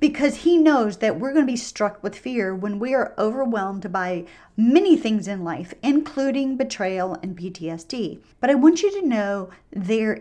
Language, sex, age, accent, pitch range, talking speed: English, female, 40-59, American, 205-270 Hz, 175 wpm